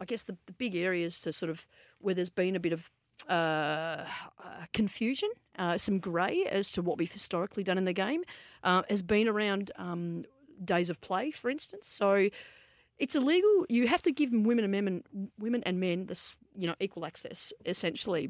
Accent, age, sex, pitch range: Australian, 30-49, female, 170-215 Hz